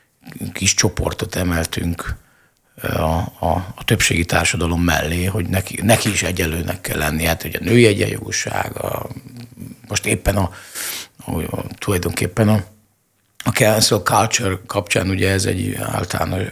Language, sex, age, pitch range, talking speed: Hungarian, male, 50-69, 90-115 Hz, 120 wpm